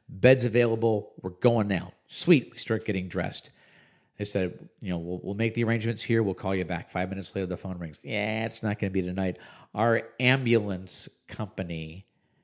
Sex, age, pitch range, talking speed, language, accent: male, 50-69, 90-105 Hz, 195 wpm, English, American